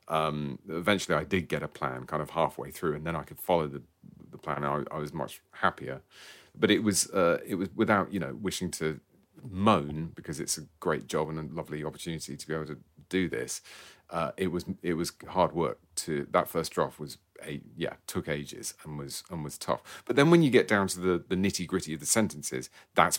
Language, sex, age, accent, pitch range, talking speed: English, male, 30-49, British, 75-90 Hz, 225 wpm